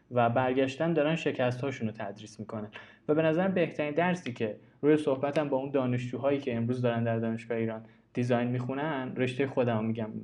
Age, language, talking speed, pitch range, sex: 20-39, Persian, 165 wpm, 115-155 Hz, male